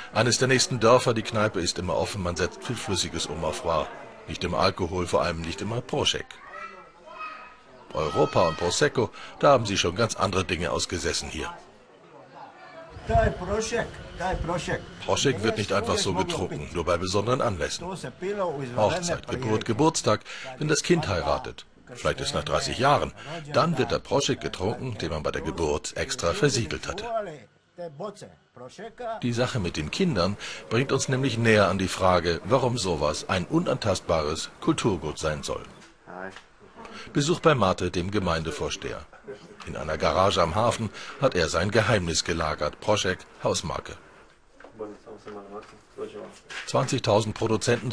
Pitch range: 90-145 Hz